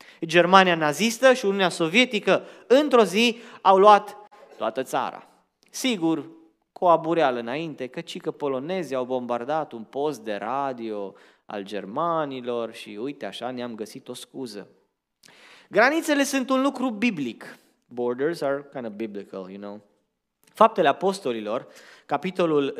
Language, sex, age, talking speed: Romanian, male, 20-39, 125 wpm